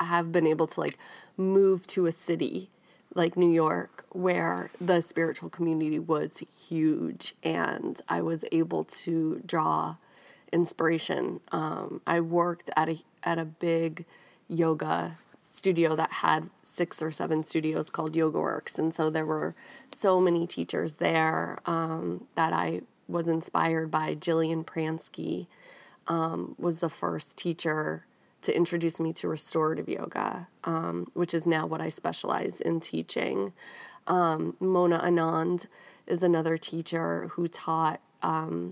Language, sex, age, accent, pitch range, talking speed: English, female, 20-39, American, 160-170 Hz, 140 wpm